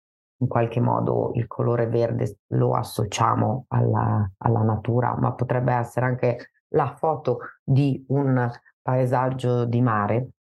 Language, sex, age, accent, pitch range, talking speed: Italian, female, 30-49, native, 115-130 Hz, 125 wpm